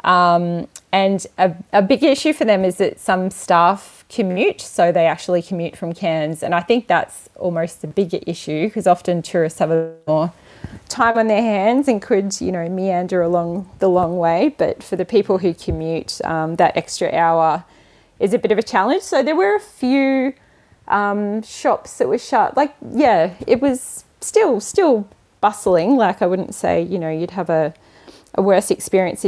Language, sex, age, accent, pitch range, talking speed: English, female, 20-39, Australian, 170-220 Hz, 185 wpm